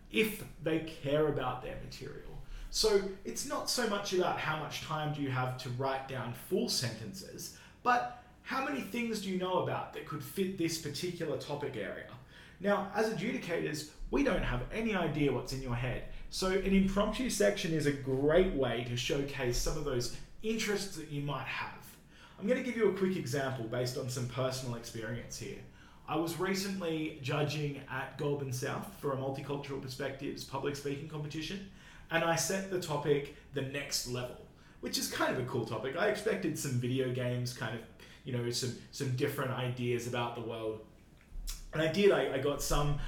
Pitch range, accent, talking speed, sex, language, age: 130-185 Hz, Australian, 185 wpm, male, English, 30-49